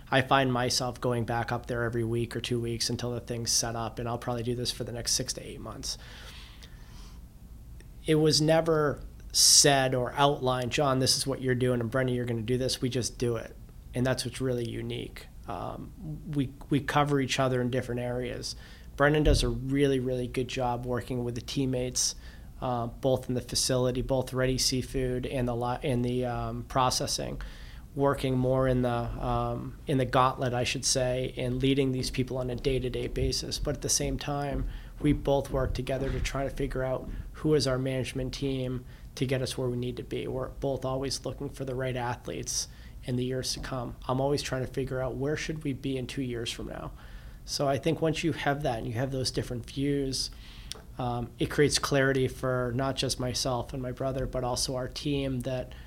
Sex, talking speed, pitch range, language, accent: male, 210 wpm, 120-135 Hz, English, American